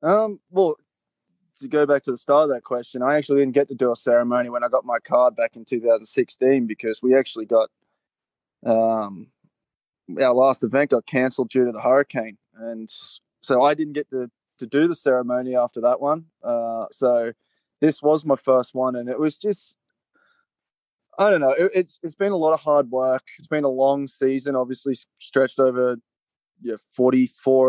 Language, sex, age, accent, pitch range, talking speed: English, male, 20-39, Australian, 120-140 Hz, 195 wpm